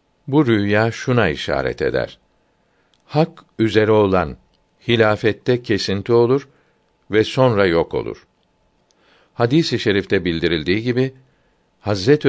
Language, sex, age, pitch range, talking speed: Turkish, male, 60-79, 95-120 Hz, 105 wpm